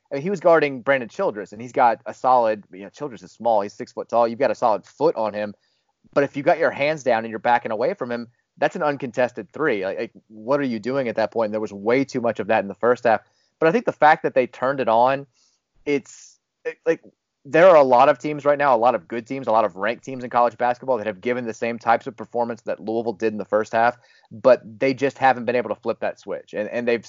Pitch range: 110-135 Hz